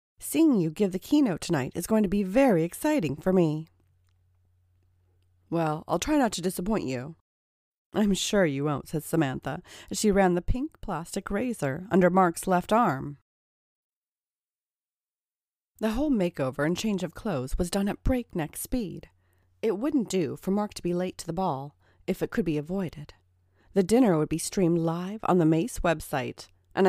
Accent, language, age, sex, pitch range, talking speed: American, English, 40-59, female, 145-200 Hz, 170 wpm